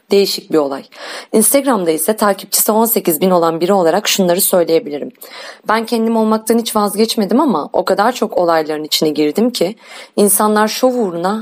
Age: 30-49